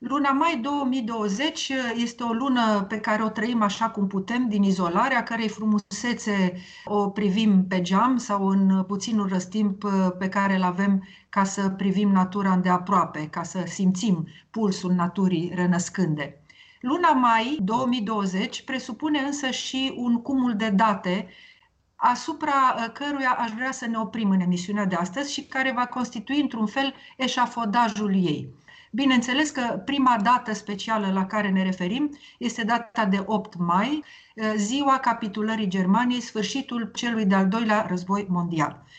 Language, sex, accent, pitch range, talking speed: Romanian, female, native, 190-235 Hz, 145 wpm